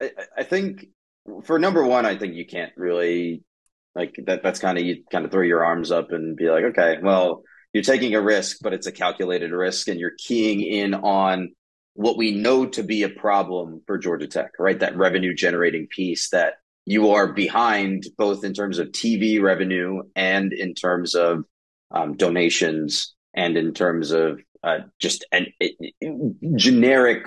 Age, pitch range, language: 30-49, 90-115 Hz, English